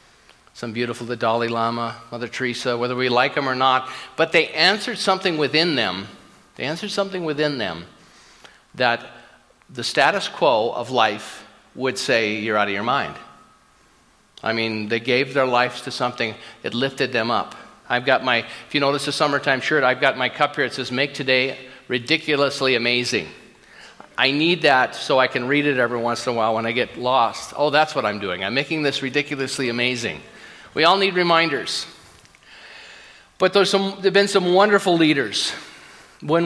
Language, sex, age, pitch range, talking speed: English, male, 50-69, 120-150 Hz, 180 wpm